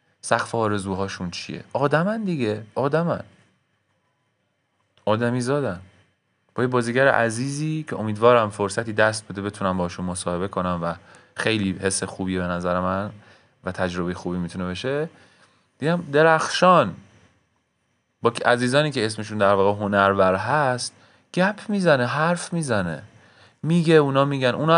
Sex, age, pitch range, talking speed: male, 30-49, 95-135 Hz, 125 wpm